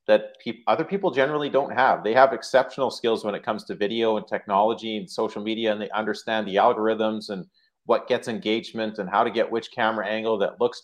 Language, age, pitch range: English, 30-49, 110-130 Hz